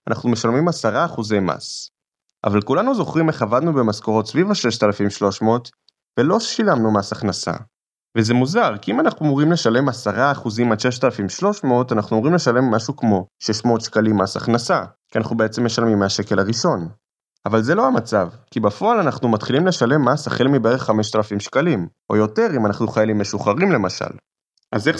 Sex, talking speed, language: male, 150 wpm, Hebrew